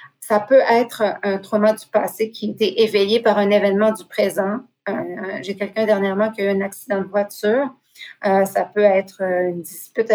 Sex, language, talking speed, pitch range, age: female, French, 195 wpm, 200-225 Hz, 40-59